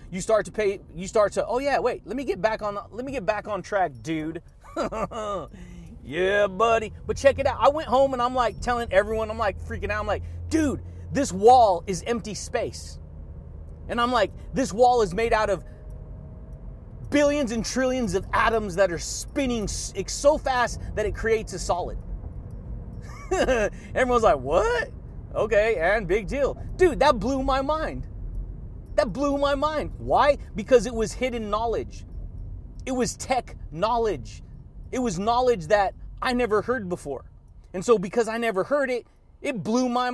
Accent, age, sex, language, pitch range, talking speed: American, 30-49, male, English, 190-255 Hz, 175 wpm